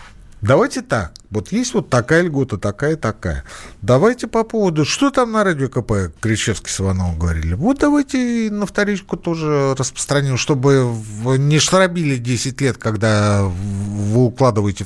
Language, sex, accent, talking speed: Russian, male, native, 135 wpm